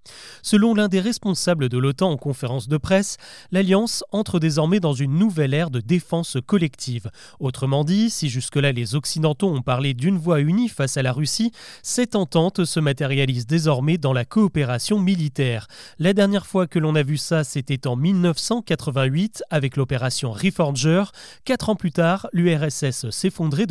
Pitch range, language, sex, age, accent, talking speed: 140-190 Hz, French, male, 30-49, French, 160 wpm